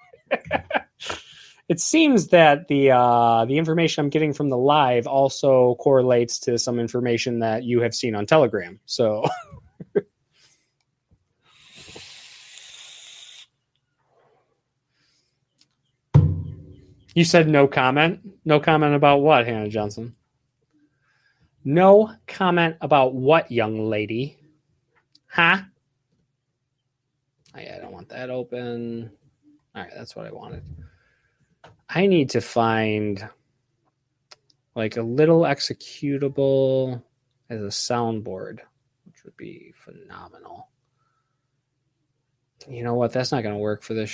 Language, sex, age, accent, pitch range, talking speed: English, male, 20-39, American, 115-145 Hz, 105 wpm